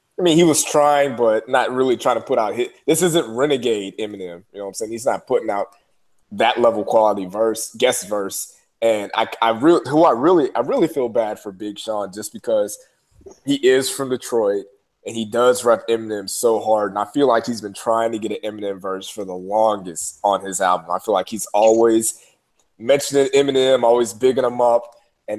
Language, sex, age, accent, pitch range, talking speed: English, male, 20-39, American, 105-130 Hz, 210 wpm